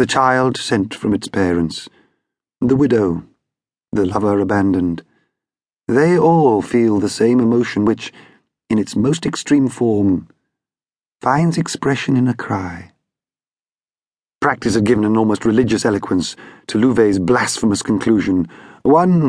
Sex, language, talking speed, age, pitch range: male, English, 125 wpm, 40-59, 100-135 Hz